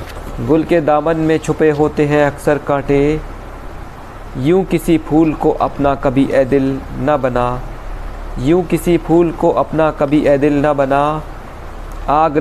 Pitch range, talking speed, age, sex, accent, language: 135-155 Hz, 145 wpm, 50-69, male, native, Hindi